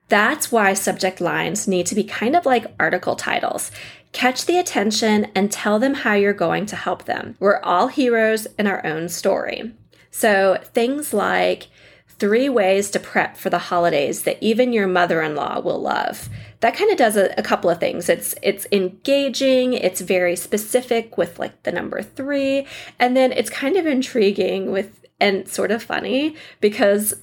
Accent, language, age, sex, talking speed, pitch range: American, English, 20-39, female, 175 wpm, 180-235 Hz